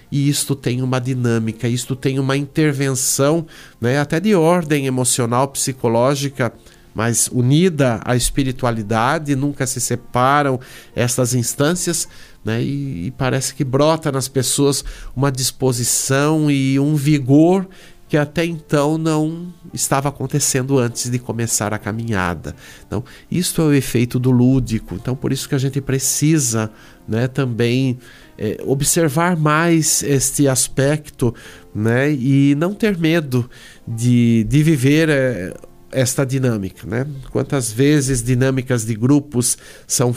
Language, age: Portuguese, 50-69